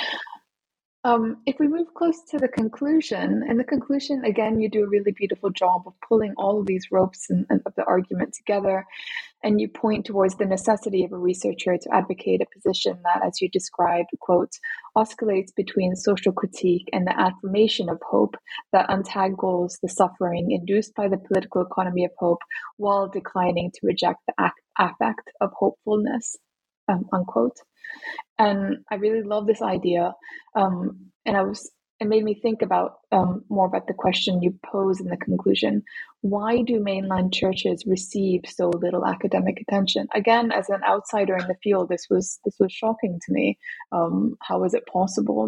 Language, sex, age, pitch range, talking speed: English, female, 20-39, 180-220 Hz, 175 wpm